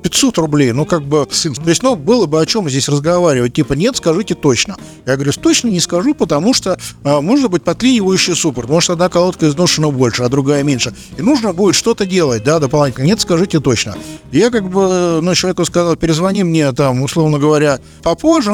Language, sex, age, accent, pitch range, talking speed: Russian, male, 50-69, native, 135-190 Hz, 195 wpm